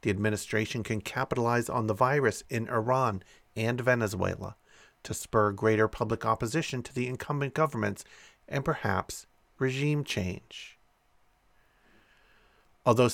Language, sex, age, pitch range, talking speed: English, male, 40-59, 110-140 Hz, 115 wpm